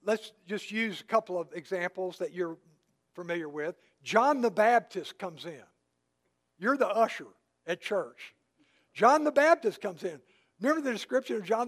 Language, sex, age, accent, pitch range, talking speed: English, male, 60-79, American, 175-240 Hz, 160 wpm